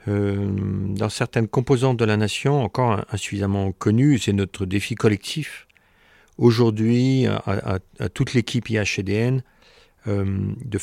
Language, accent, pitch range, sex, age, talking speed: French, French, 105-125 Hz, male, 40-59, 120 wpm